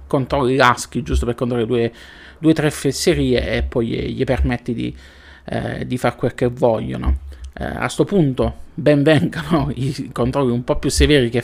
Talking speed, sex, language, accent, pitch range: 175 wpm, male, Italian, native, 115-140 Hz